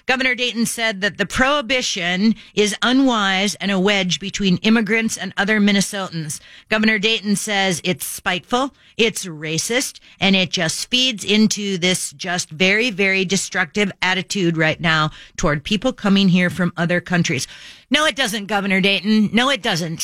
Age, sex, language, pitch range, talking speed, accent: 40-59, female, English, 180-225 Hz, 155 wpm, American